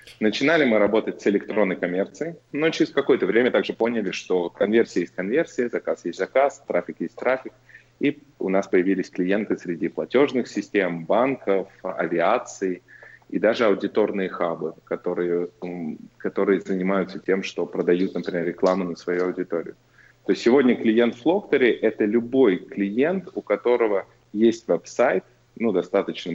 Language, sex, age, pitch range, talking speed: Russian, male, 20-39, 95-115 Hz, 140 wpm